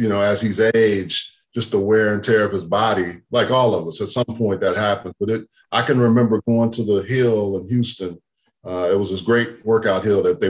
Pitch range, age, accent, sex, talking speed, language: 105-125 Hz, 40-59, American, male, 240 wpm, English